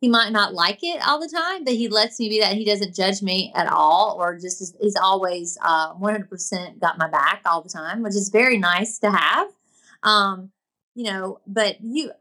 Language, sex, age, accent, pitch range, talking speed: English, female, 30-49, American, 205-285 Hz, 215 wpm